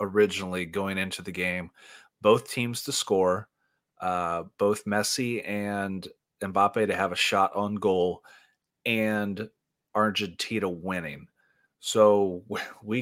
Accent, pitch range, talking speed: American, 95-120 Hz, 115 wpm